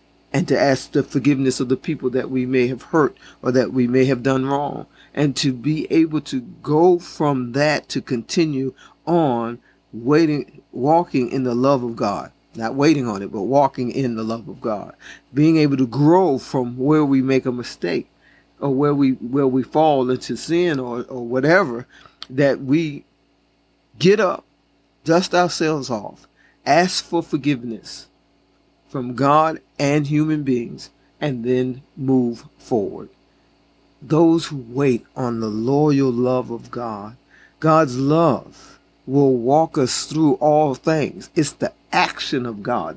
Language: English